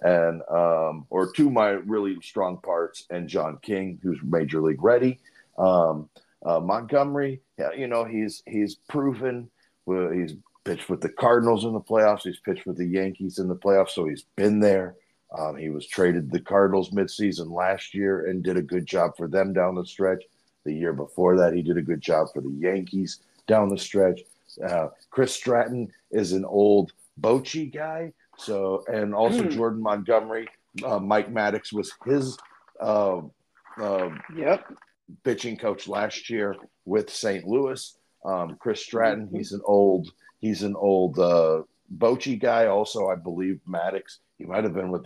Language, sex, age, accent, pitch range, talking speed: English, male, 50-69, American, 90-110 Hz, 170 wpm